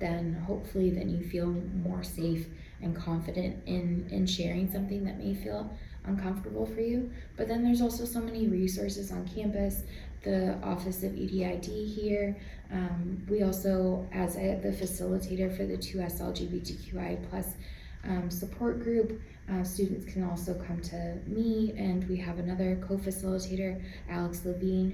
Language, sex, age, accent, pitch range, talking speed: English, female, 20-39, American, 180-200 Hz, 145 wpm